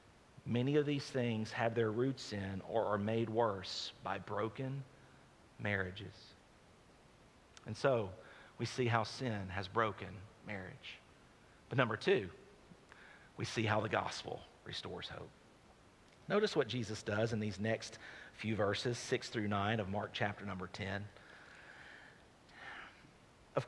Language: English